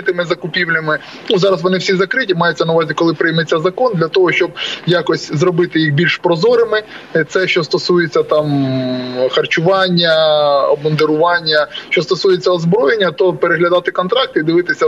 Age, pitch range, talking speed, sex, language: 20-39, 150-195 Hz, 140 wpm, male, Ukrainian